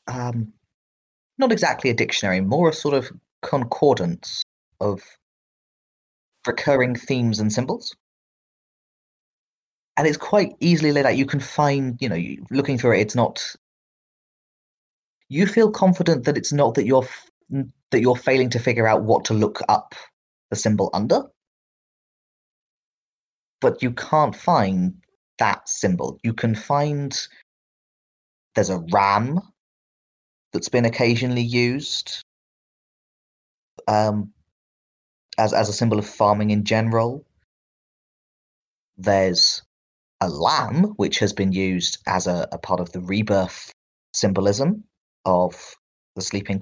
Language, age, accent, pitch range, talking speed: English, 30-49, British, 95-135 Hz, 125 wpm